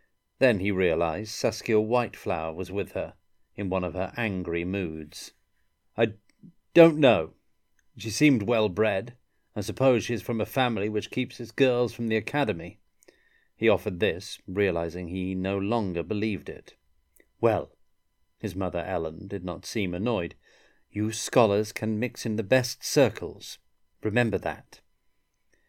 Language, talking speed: English, 140 wpm